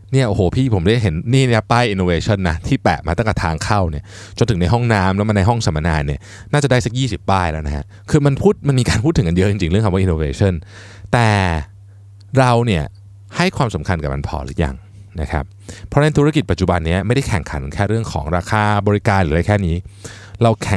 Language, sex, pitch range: Thai, male, 90-115 Hz